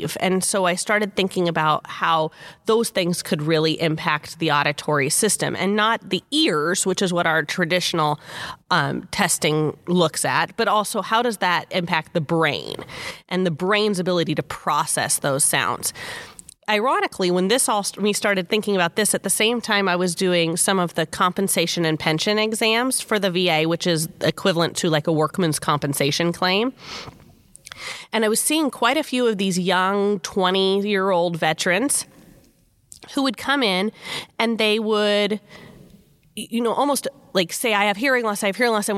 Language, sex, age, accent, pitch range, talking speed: English, female, 30-49, American, 175-215 Hz, 175 wpm